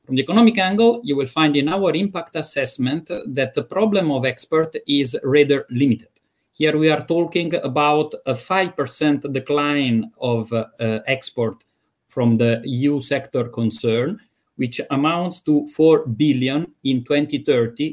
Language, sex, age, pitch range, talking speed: English, male, 50-69, 120-150 Hz, 145 wpm